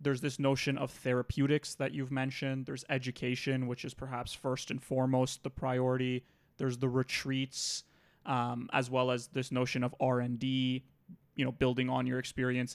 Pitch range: 125-140 Hz